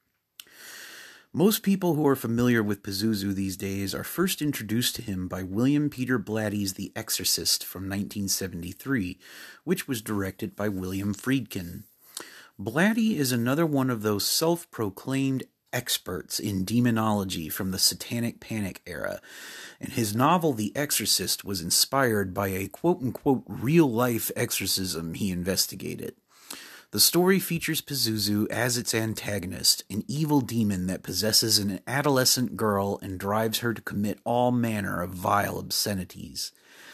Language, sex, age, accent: English, male, 30-49, American